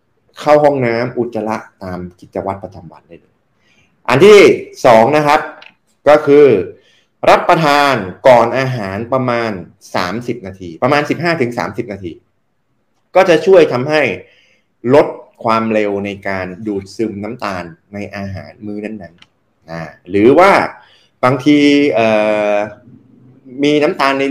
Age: 20-39